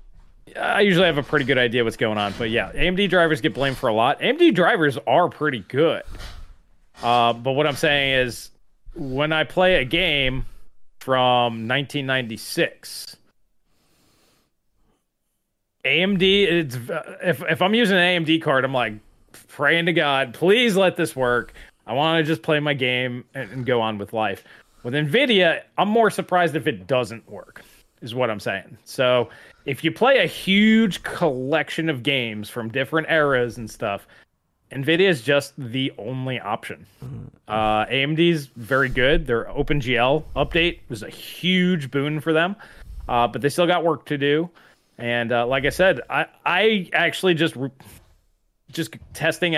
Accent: American